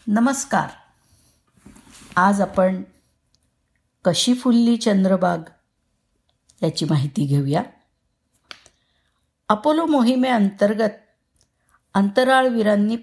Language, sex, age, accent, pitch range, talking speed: Marathi, female, 60-79, native, 175-225 Hz, 55 wpm